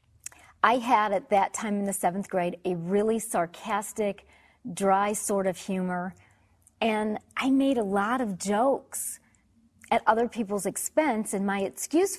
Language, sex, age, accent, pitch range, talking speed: English, female, 40-59, American, 195-260 Hz, 150 wpm